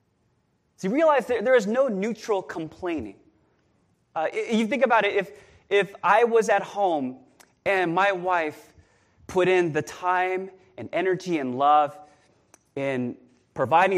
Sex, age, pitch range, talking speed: male, 20-39, 165-235 Hz, 140 wpm